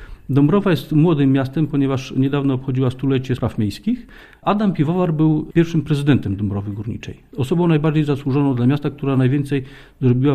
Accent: native